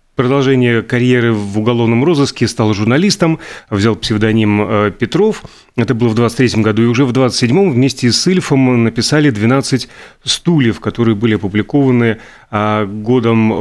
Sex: male